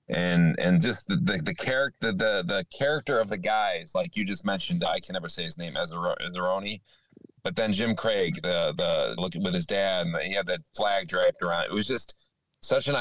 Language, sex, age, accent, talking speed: English, male, 30-49, American, 220 wpm